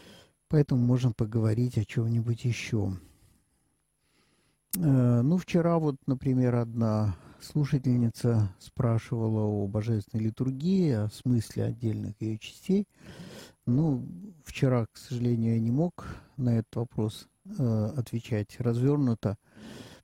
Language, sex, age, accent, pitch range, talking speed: Russian, male, 50-69, native, 105-130 Hz, 100 wpm